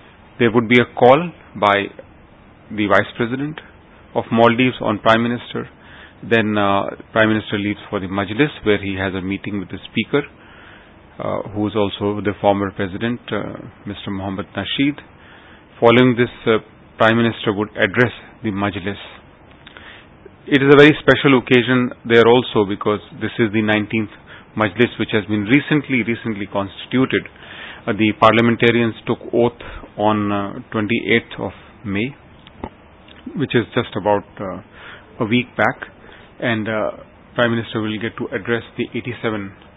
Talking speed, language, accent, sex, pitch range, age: 150 wpm, English, Indian, male, 105-120 Hz, 30-49